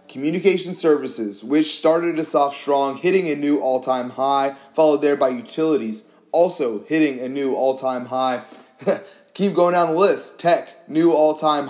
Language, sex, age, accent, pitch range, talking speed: English, male, 30-49, American, 130-155 Hz, 155 wpm